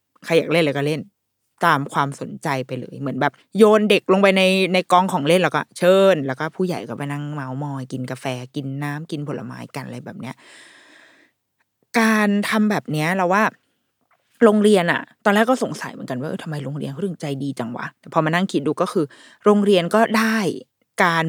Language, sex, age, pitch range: Thai, female, 20-39, 150-210 Hz